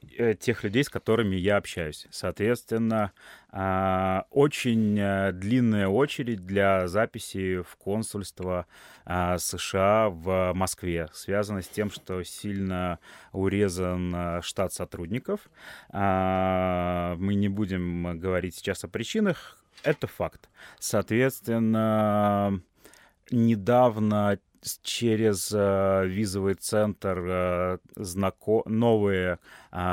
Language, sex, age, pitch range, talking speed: Russian, male, 30-49, 90-105 Hz, 80 wpm